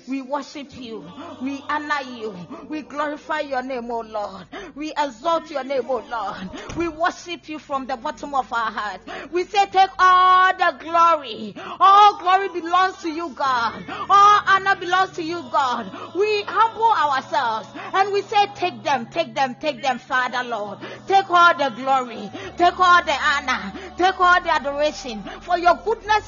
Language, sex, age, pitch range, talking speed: English, female, 40-59, 275-370 Hz, 175 wpm